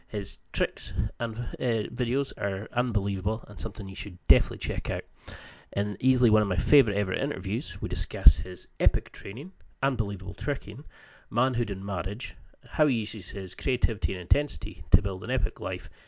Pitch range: 95-115 Hz